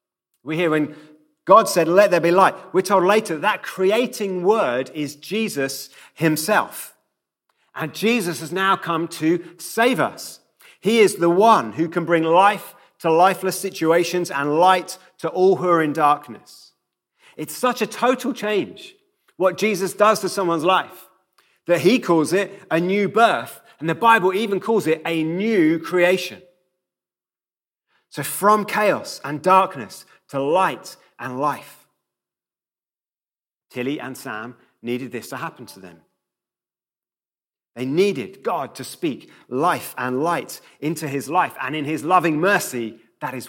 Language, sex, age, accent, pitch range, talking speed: English, male, 30-49, British, 150-195 Hz, 150 wpm